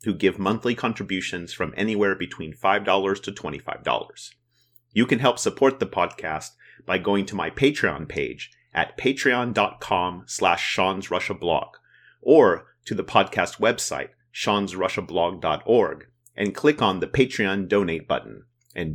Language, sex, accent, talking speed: English, male, American, 125 wpm